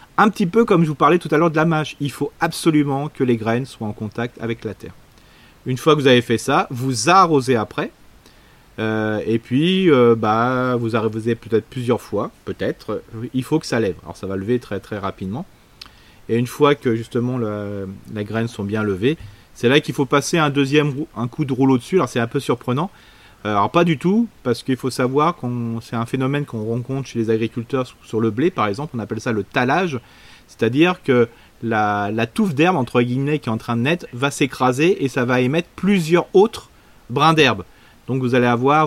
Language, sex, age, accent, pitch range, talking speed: French, male, 30-49, French, 115-145 Hz, 215 wpm